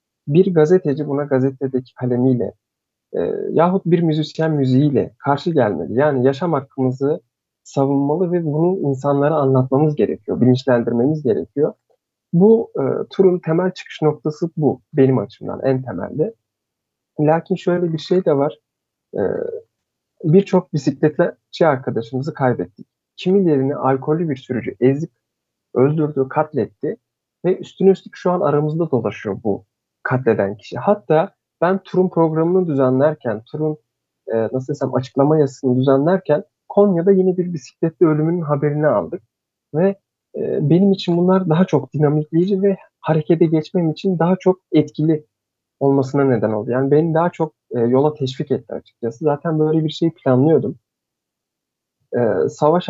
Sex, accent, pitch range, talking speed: male, native, 130-175 Hz, 130 wpm